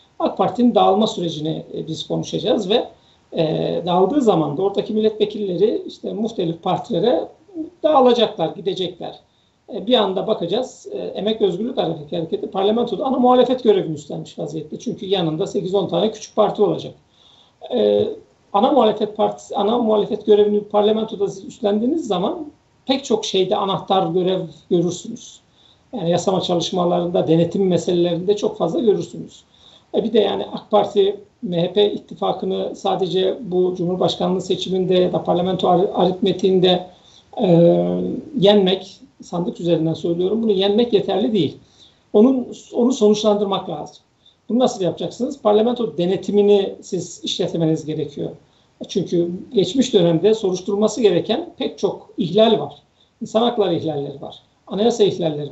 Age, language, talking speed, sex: 50-69, Turkish, 125 wpm, male